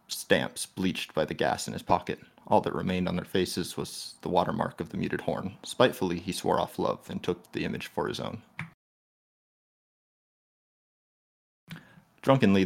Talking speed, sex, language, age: 160 wpm, male, English, 30-49